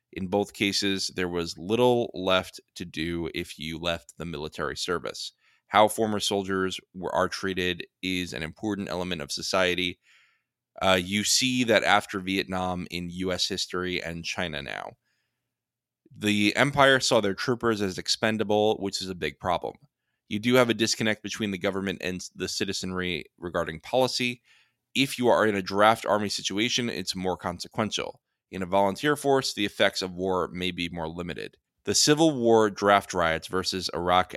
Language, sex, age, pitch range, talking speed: English, male, 20-39, 90-115 Hz, 160 wpm